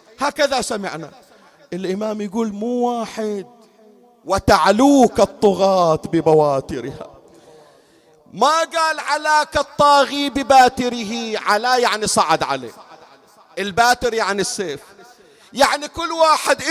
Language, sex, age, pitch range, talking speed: Arabic, male, 40-59, 175-275 Hz, 85 wpm